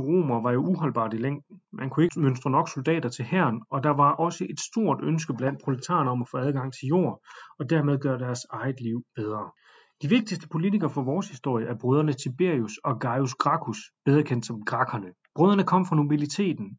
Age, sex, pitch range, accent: 30-49, male, 130-165 Hz, native